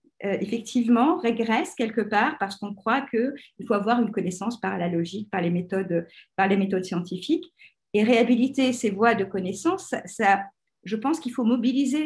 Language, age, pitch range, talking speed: French, 50-69, 190-250 Hz, 175 wpm